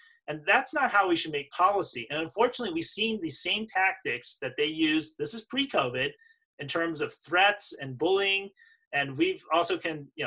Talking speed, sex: 185 wpm, male